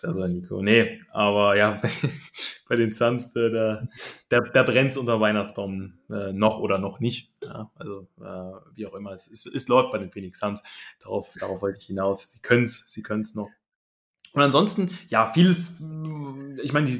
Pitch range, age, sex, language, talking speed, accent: 105-125 Hz, 20-39, male, German, 175 wpm, German